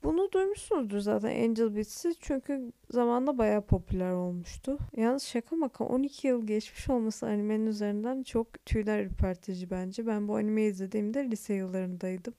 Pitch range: 220-310 Hz